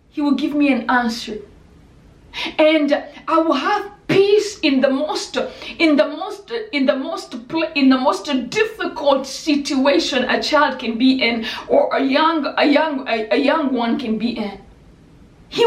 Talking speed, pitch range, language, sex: 165 wpm, 285-370 Hz, English, female